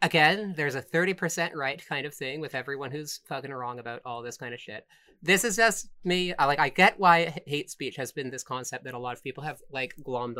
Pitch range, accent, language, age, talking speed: 130-170 Hz, American, English, 30-49, 240 wpm